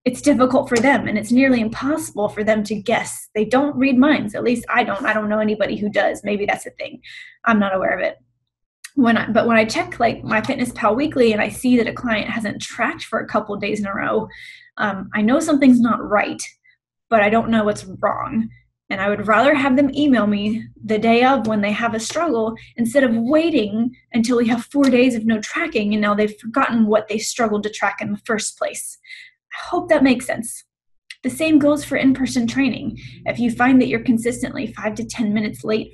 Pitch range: 215-270 Hz